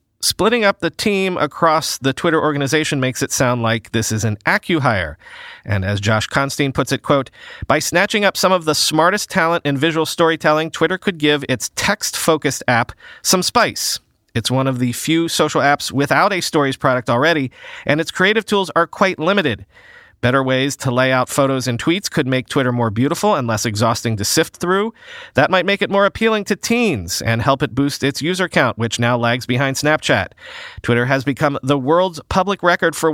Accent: American